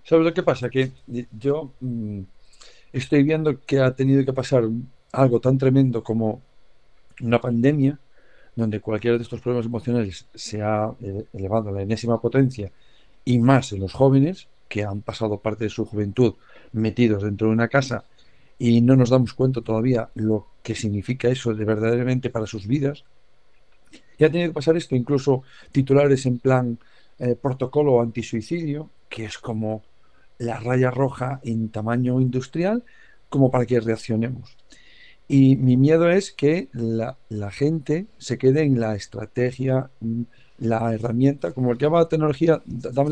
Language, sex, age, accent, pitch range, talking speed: Spanish, male, 50-69, Spanish, 115-140 Hz, 155 wpm